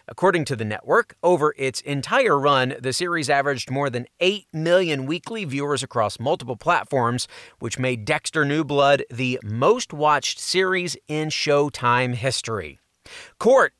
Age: 30-49